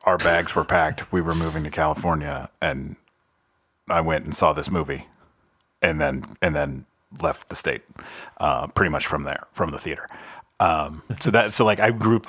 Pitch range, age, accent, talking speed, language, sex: 85-105 Hz, 40-59, American, 185 wpm, English, male